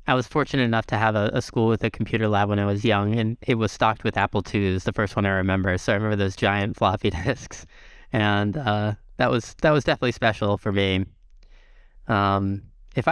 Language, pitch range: English, 100-120 Hz